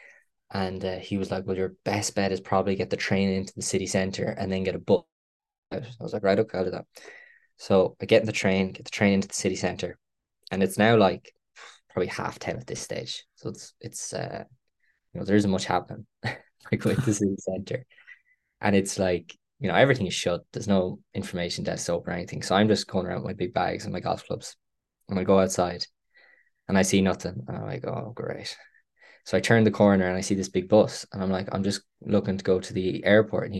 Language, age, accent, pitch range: English, 10-29, Irish, 95-110 Hz